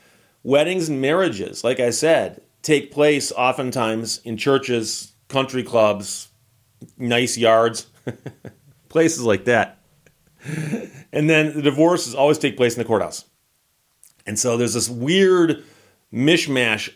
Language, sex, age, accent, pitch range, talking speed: English, male, 40-59, American, 105-135 Hz, 120 wpm